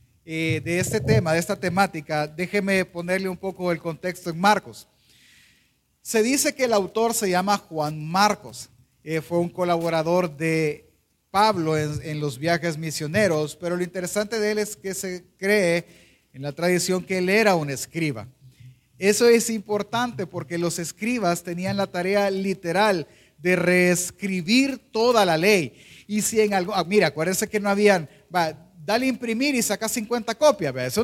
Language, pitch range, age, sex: Spanish, 160-225 Hz, 40-59, male